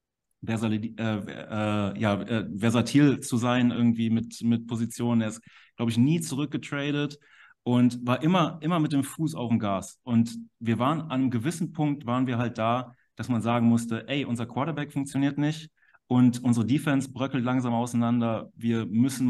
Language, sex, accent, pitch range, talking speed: German, male, German, 115-135 Hz, 160 wpm